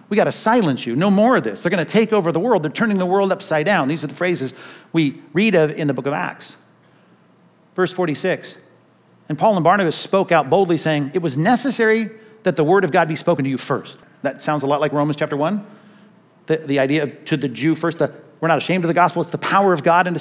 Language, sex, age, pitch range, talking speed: English, male, 50-69, 150-200 Hz, 255 wpm